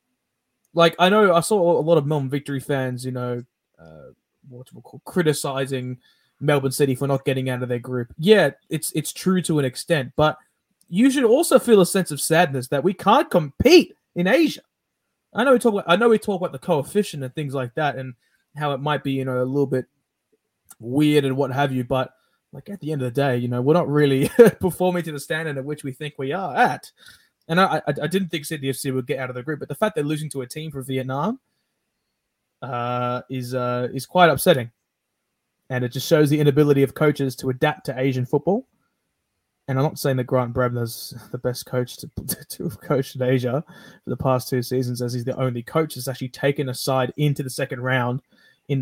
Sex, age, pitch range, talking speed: male, 20-39, 130-170 Hz, 225 wpm